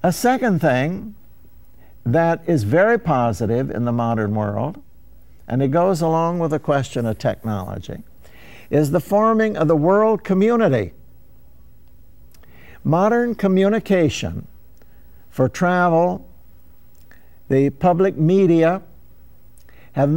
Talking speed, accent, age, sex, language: 105 wpm, American, 60-79, male, English